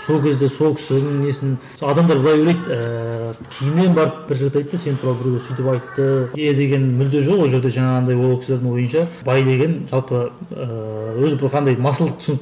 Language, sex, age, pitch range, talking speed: Russian, male, 30-49, 125-145 Hz, 120 wpm